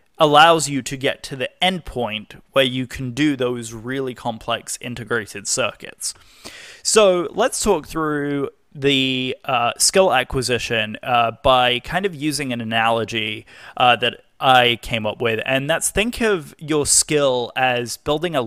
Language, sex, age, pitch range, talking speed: English, male, 20-39, 120-155 Hz, 155 wpm